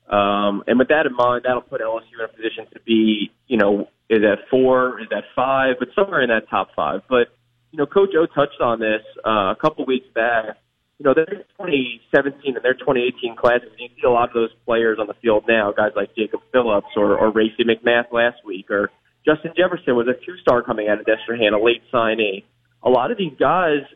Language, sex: English, male